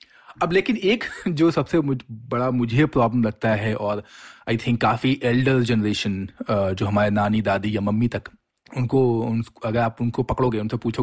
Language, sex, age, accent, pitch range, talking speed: Hindi, male, 30-49, native, 110-135 Hz, 175 wpm